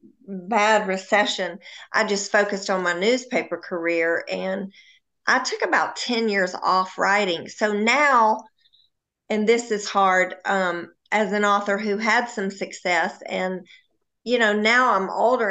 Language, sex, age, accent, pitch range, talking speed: English, female, 50-69, American, 185-215 Hz, 145 wpm